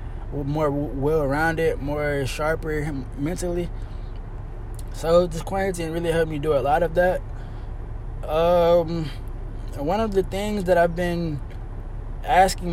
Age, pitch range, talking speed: 20-39, 125-165 Hz, 125 wpm